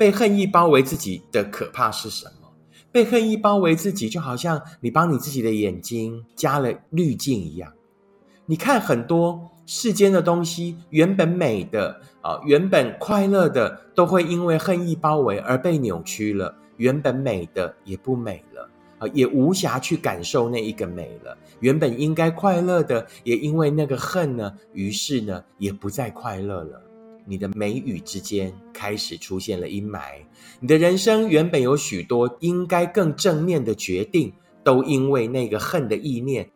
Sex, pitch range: male, 105-175 Hz